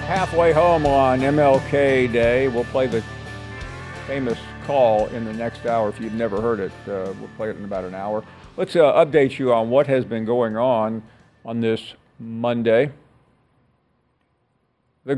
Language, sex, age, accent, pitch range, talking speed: English, male, 50-69, American, 115-145 Hz, 160 wpm